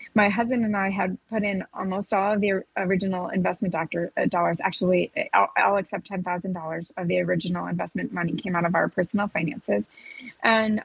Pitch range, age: 185-215 Hz, 30-49